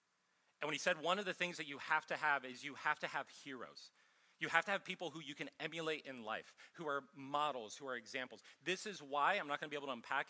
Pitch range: 130-165 Hz